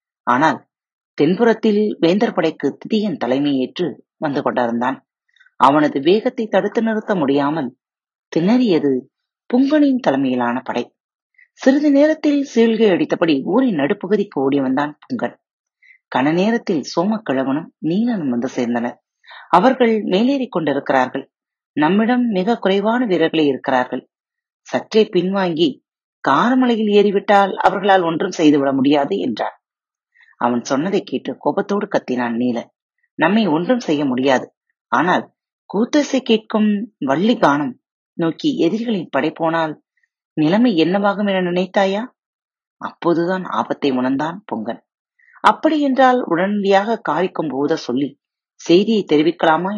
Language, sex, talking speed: Tamil, female, 100 wpm